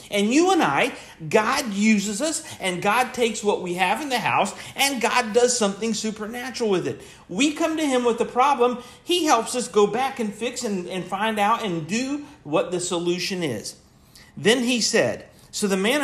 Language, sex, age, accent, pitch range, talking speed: English, male, 50-69, American, 175-245 Hz, 200 wpm